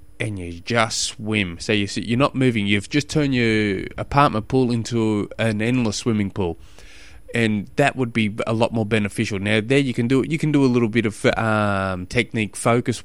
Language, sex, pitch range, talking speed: English, male, 100-115 Hz, 200 wpm